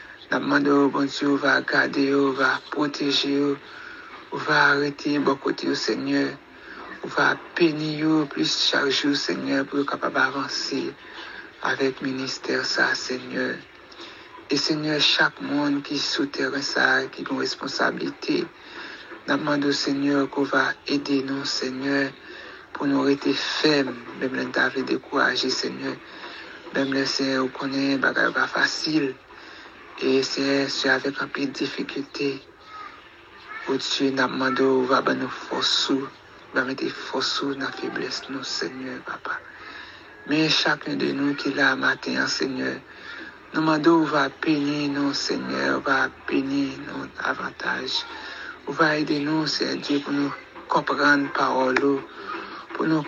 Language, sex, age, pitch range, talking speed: English, male, 60-79, 135-145 Hz, 125 wpm